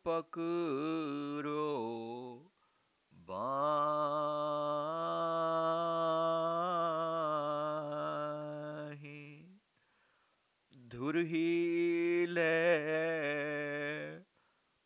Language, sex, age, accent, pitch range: Hindi, male, 50-69, native, 140-165 Hz